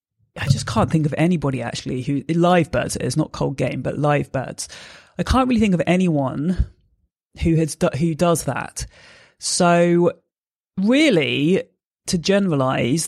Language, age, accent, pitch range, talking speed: English, 30-49, British, 140-175 Hz, 145 wpm